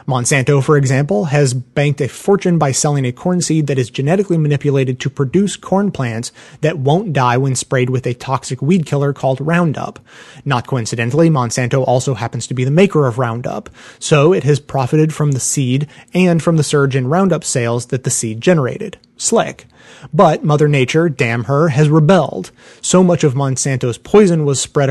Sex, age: male, 30-49